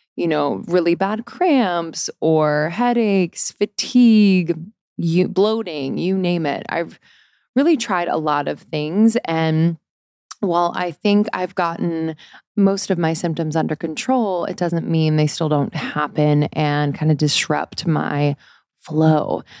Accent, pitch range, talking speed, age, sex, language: American, 150-185 Hz, 135 wpm, 20-39, female, English